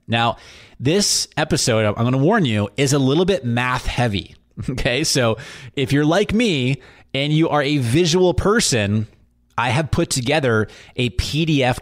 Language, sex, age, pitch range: English, male, 20-39, 105-135 Hz